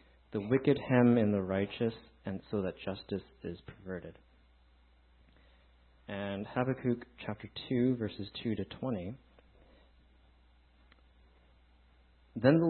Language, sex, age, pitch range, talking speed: English, male, 30-49, 90-120 Hz, 105 wpm